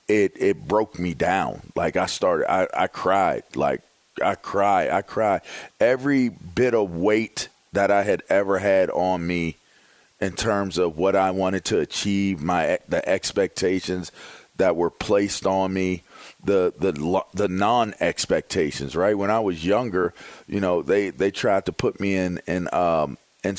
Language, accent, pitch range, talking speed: English, American, 85-100 Hz, 165 wpm